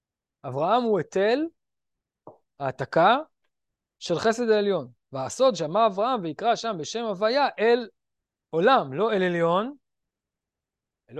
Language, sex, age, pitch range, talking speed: Hebrew, male, 20-39, 140-210 Hz, 105 wpm